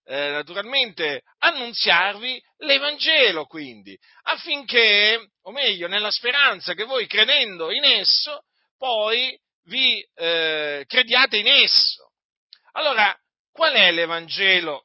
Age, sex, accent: 50-69, male, native